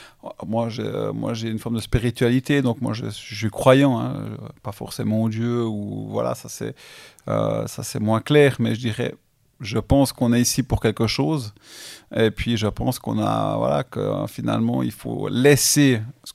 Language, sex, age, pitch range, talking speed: French, male, 30-49, 115-135 Hz, 185 wpm